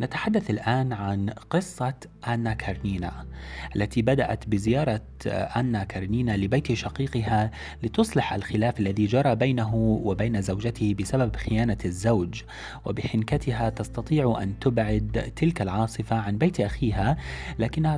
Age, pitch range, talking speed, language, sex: 30-49, 100-125 Hz, 110 wpm, Arabic, male